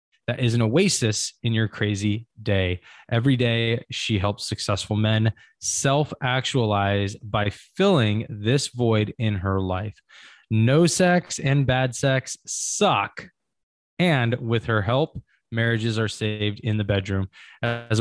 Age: 20-39